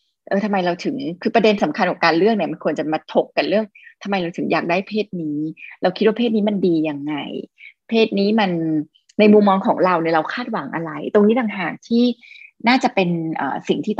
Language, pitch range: Thai, 175-230 Hz